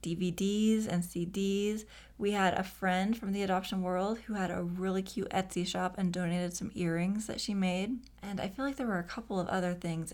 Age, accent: 30-49, American